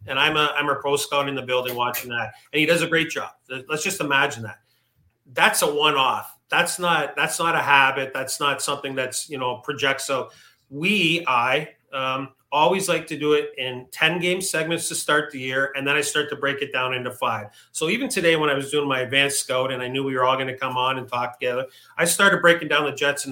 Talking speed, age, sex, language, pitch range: 240 wpm, 40-59, male, English, 130-160 Hz